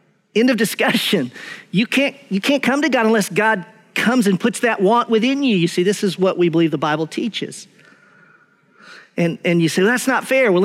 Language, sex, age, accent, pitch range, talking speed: English, male, 50-69, American, 175-235 Hz, 205 wpm